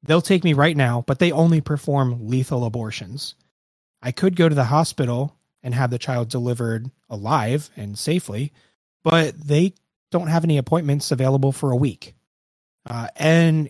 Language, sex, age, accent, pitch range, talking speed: English, male, 30-49, American, 120-150 Hz, 160 wpm